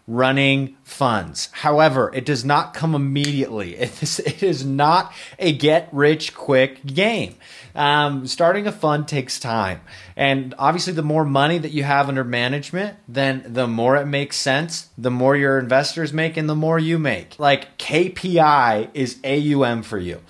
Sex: male